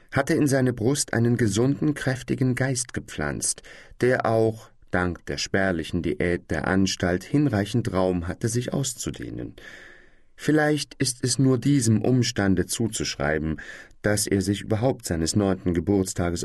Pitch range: 95-130 Hz